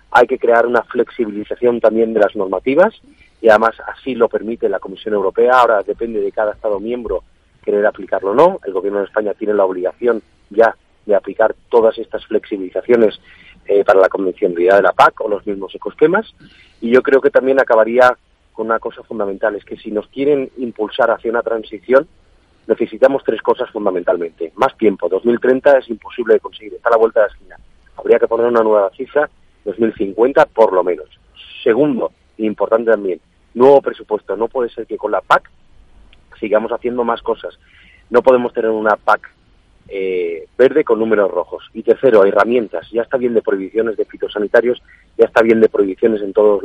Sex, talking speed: male, 180 wpm